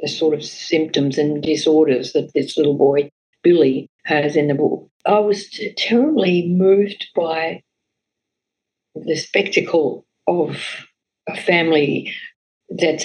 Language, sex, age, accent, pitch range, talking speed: English, female, 50-69, Australian, 160-205 Hz, 120 wpm